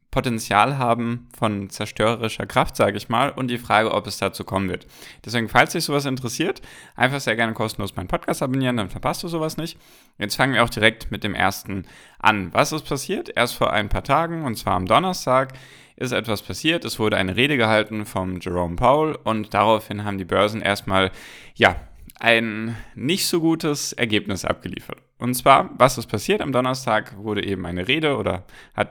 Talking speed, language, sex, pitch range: 190 wpm, German, male, 100-130 Hz